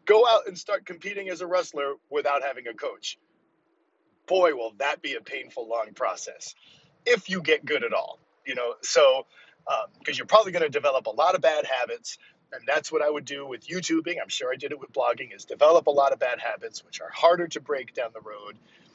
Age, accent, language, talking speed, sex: 40-59, American, English, 225 wpm, male